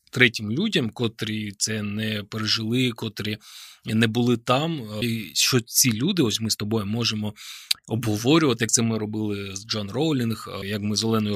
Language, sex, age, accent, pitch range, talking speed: Ukrainian, male, 20-39, native, 105-130 Hz, 165 wpm